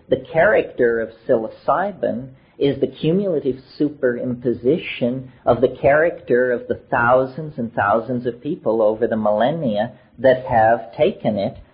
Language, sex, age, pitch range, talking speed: English, male, 50-69, 110-145 Hz, 130 wpm